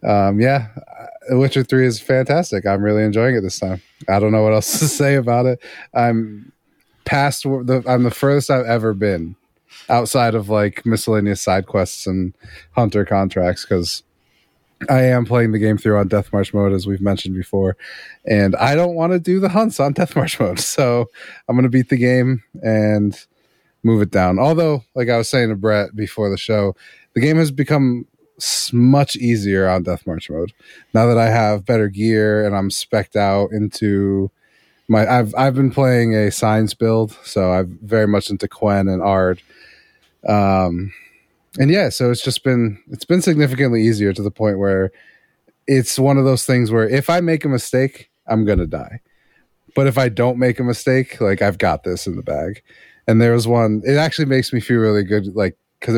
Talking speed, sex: 195 wpm, male